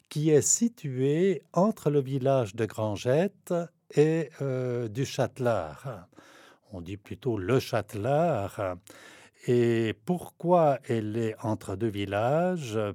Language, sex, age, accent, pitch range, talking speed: French, male, 60-79, French, 100-140 Hz, 110 wpm